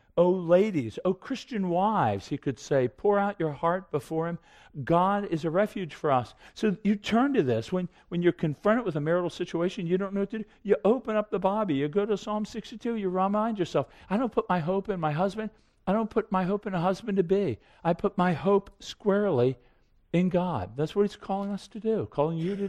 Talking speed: 225 wpm